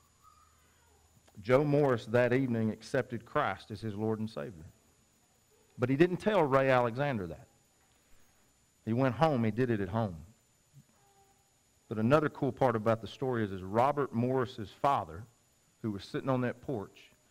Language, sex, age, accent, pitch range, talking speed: English, male, 40-59, American, 110-135 Hz, 155 wpm